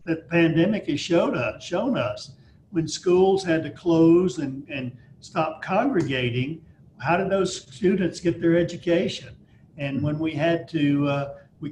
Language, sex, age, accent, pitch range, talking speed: English, male, 50-69, American, 140-170 Hz, 160 wpm